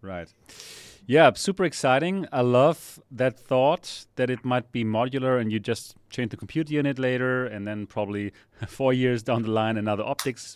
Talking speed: 175 wpm